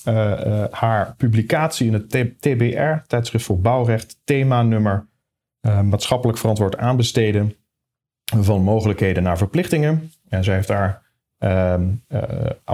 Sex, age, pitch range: male, 40-59, 105-125 Hz